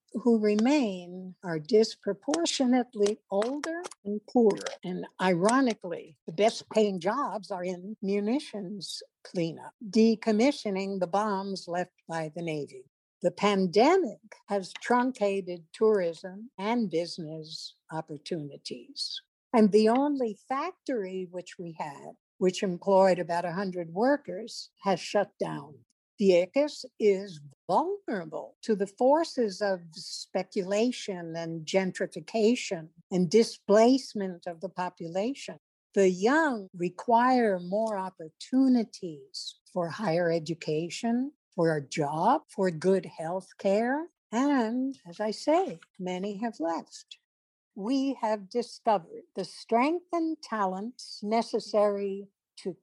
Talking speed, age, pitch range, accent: 105 wpm, 60-79, 180-235 Hz, American